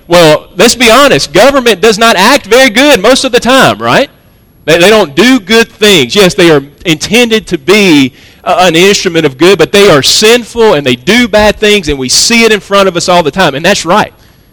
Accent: American